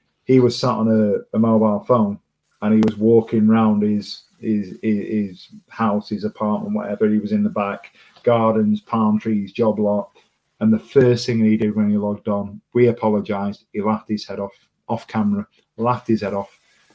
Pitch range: 105-120 Hz